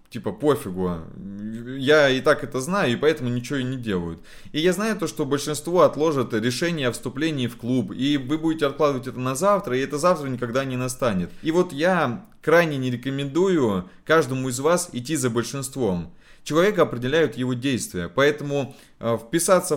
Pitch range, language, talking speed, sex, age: 115-150 Hz, Russian, 170 wpm, male, 20-39